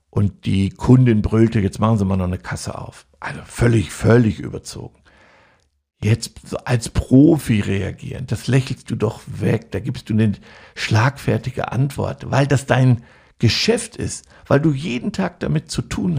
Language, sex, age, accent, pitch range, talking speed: German, male, 60-79, German, 105-140 Hz, 160 wpm